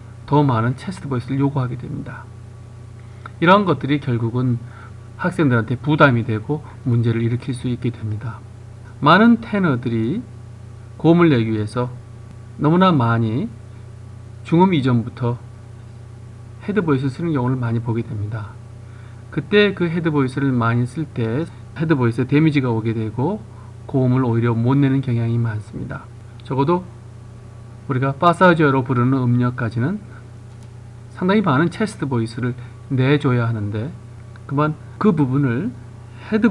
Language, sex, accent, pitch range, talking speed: English, male, Korean, 115-140 Hz, 105 wpm